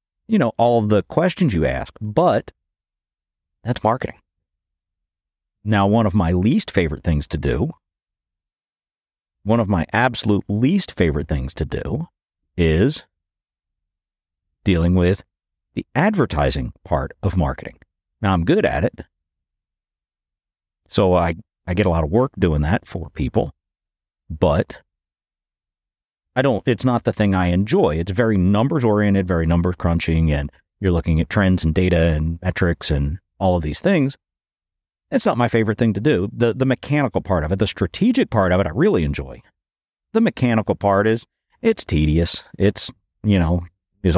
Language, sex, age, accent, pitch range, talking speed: English, male, 50-69, American, 80-105 Hz, 155 wpm